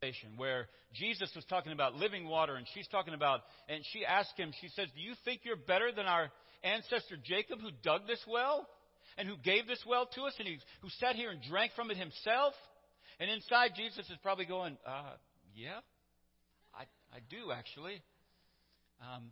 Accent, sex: American, male